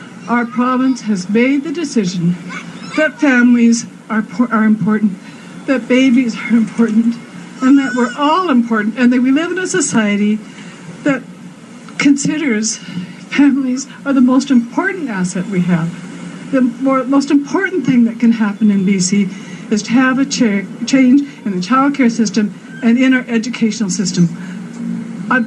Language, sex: English, female